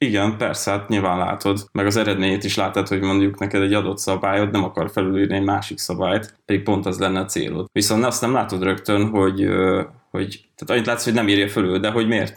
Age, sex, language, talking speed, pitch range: 20-39, male, Hungarian, 220 wpm, 95-110 Hz